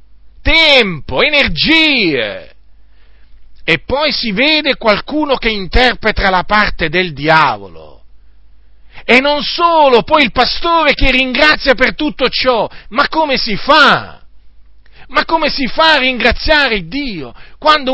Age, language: 40-59, Italian